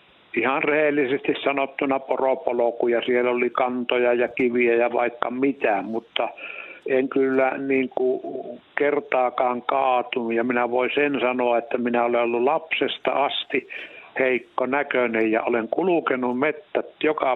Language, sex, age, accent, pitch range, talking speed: Finnish, male, 60-79, native, 120-140 Hz, 130 wpm